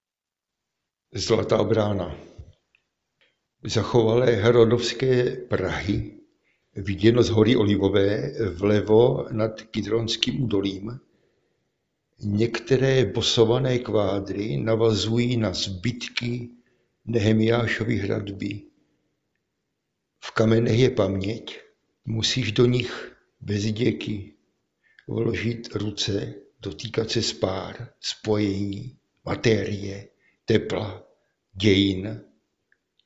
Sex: male